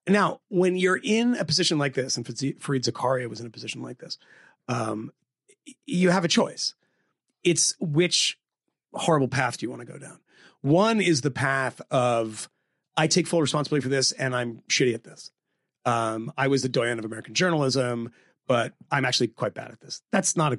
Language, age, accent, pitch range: English, 30-49, American, 125-175 Hz